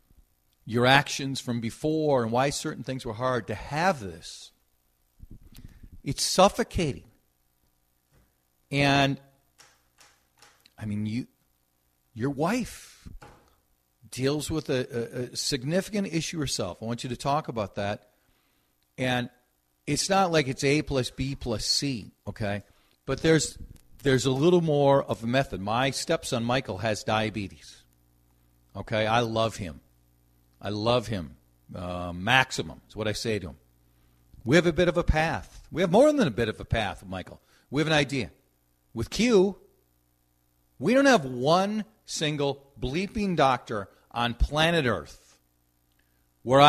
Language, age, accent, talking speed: English, 50-69, American, 140 wpm